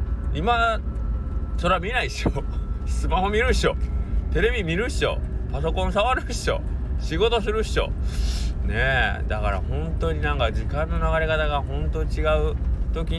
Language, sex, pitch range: Japanese, male, 65-90 Hz